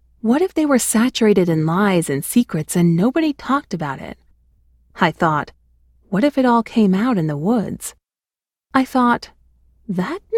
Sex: female